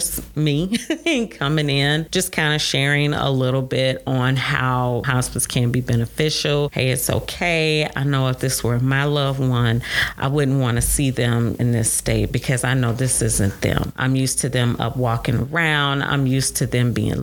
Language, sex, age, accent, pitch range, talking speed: English, female, 40-59, American, 125-150 Hz, 190 wpm